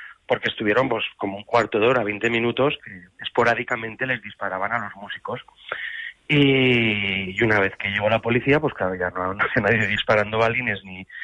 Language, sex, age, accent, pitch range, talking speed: Spanish, male, 30-49, Spanish, 100-120 Hz, 180 wpm